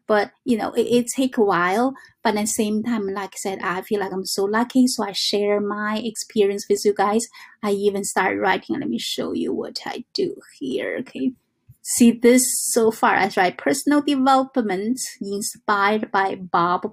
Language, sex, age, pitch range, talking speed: English, female, 20-39, 200-250 Hz, 190 wpm